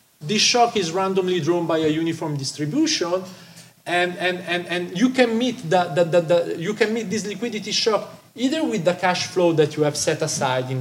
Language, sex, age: French, male, 40-59